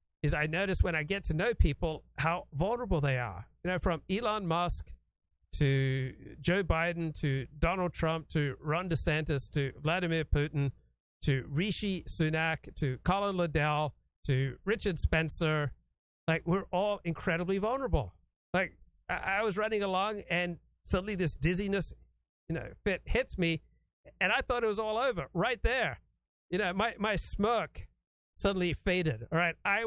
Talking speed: 155 wpm